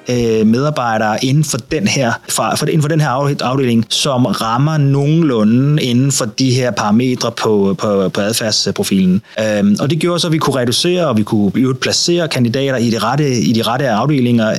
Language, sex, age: Danish, male, 30-49